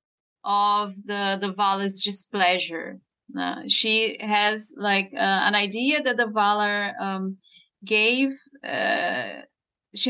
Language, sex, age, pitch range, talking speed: English, female, 30-49, 180-230 Hz, 115 wpm